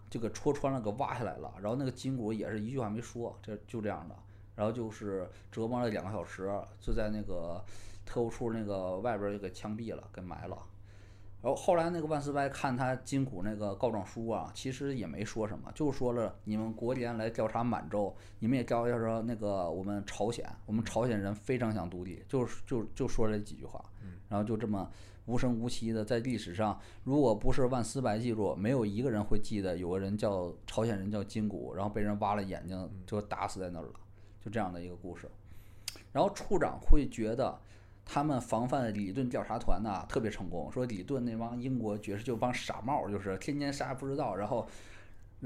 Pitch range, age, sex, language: 100-120 Hz, 20-39, male, Chinese